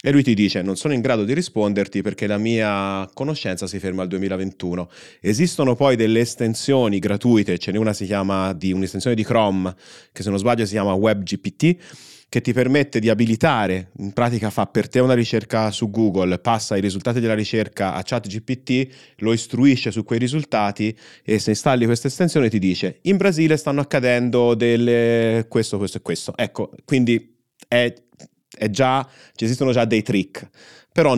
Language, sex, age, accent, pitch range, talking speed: Italian, male, 30-49, native, 100-120 Hz, 175 wpm